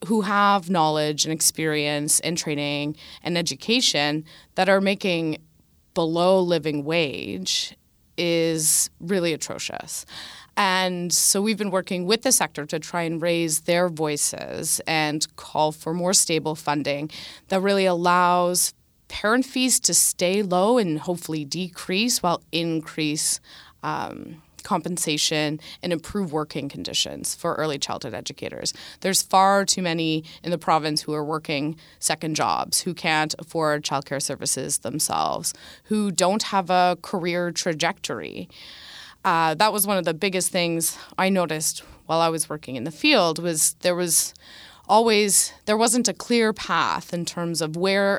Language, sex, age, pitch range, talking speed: English, female, 20-39, 155-195 Hz, 145 wpm